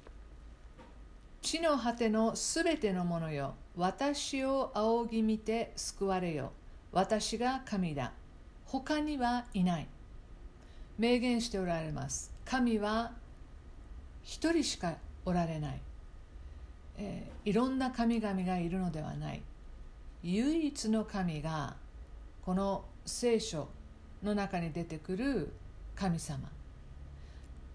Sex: female